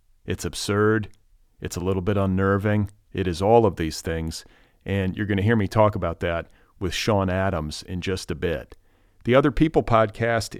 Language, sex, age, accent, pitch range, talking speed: English, male, 40-59, American, 90-110 Hz, 185 wpm